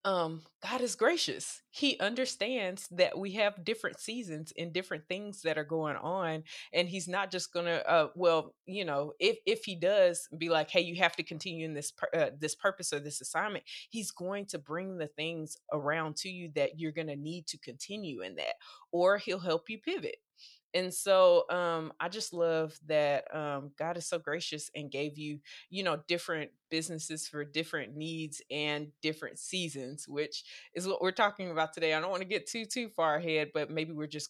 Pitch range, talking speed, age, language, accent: 150-185 Hz, 205 wpm, 20-39, English, American